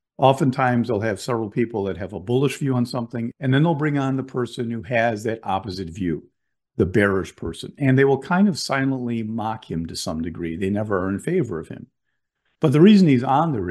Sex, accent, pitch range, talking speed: male, American, 105-135 Hz, 225 wpm